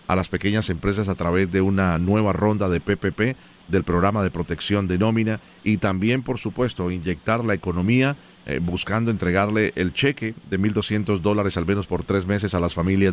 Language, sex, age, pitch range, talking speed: Spanish, male, 40-59, 90-110 Hz, 185 wpm